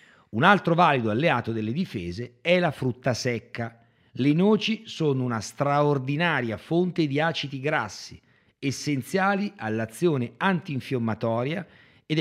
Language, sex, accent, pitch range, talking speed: Italian, male, native, 105-160 Hz, 115 wpm